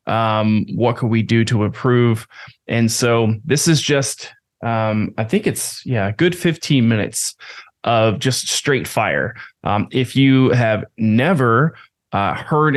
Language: English